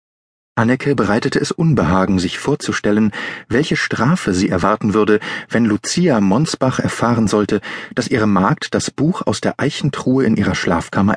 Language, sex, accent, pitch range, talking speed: German, male, German, 100-140 Hz, 145 wpm